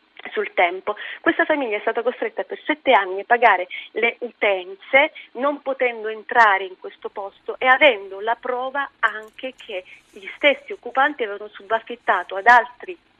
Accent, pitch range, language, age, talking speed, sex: native, 215-295 Hz, Italian, 30-49, 150 wpm, female